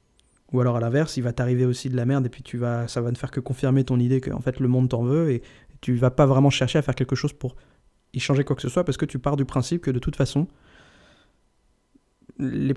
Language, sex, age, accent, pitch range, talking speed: French, male, 20-39, French, 125-140 Hz, 275 wpm